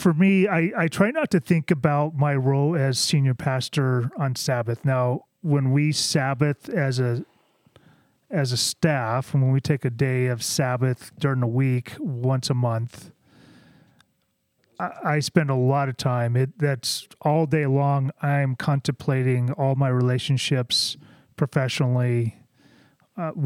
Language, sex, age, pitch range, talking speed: English, male, 30-49, 130-155 Hz, 150 wpm